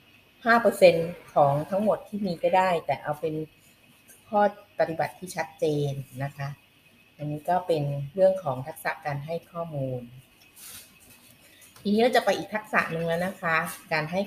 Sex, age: female, 30-49